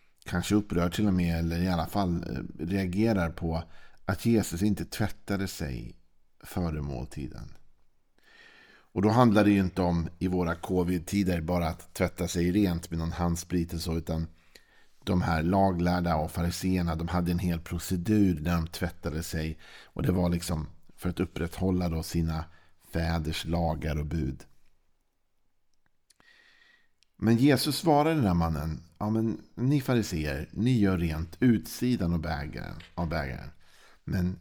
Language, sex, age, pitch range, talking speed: Swedish, male, 50-69, 80-95 Hz, 145 wpm